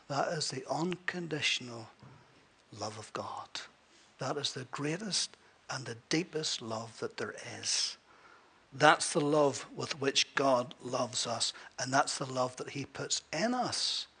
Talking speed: 150 wpm